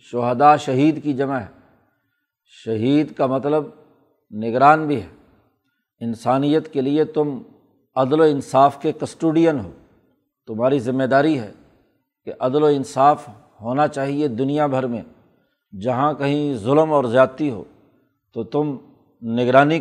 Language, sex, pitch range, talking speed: Urdu, male, 130-150 Hz, 130 wpm